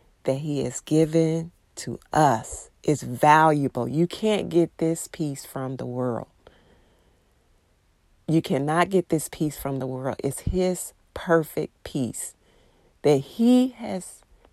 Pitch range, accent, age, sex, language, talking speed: 130-165 Hz, American, 40-59, female, English, 130 wpm